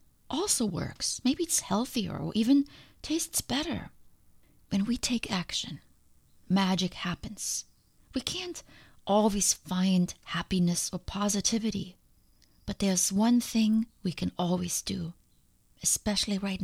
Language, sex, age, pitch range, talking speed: English, female, 30-49, 175-220 Hz, 115 wpm